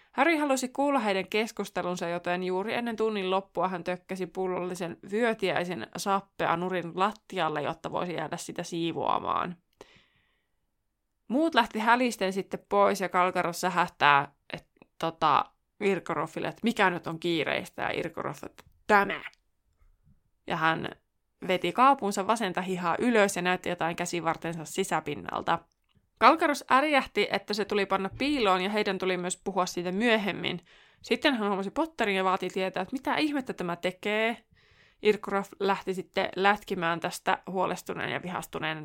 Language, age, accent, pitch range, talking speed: Finnish, 20-39, native, 175-210 Hz, 135 wpm